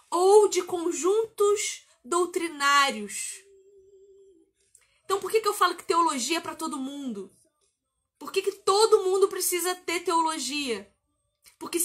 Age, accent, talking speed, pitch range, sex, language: 20-39, Brazilian, 125 wpm, 280-370 Hz, female, Portuguese